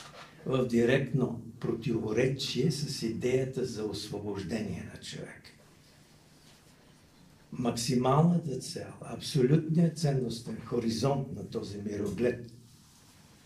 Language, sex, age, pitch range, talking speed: Bulgarian, male, 60-79, 115-160 Hz, 75 wpm